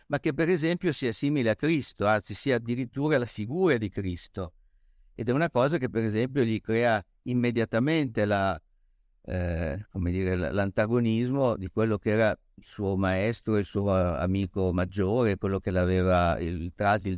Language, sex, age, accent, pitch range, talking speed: Italian, male, 60-79, native, 95-120 Hz, 165 wpm